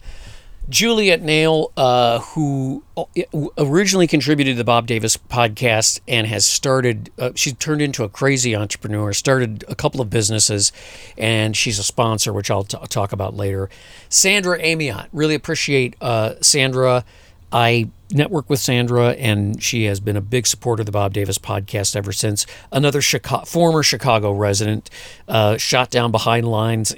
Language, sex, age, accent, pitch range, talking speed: English, male, 50-69, American, 100-130 Hz, 160 wpm